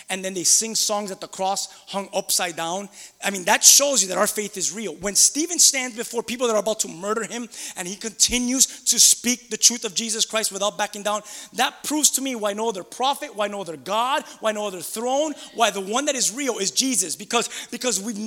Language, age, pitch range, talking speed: English, 20-39, 215-290 Hz, 235 wpm